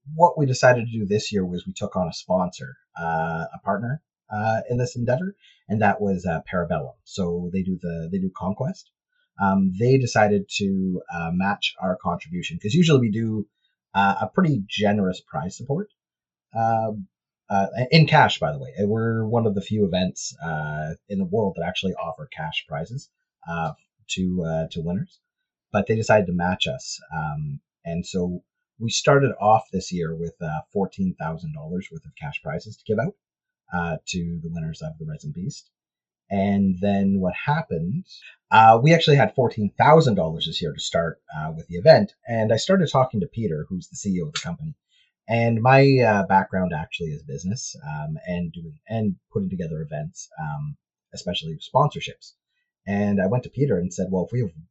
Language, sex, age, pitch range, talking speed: English, male, 30-49, 90-150 Hz, 180 wpm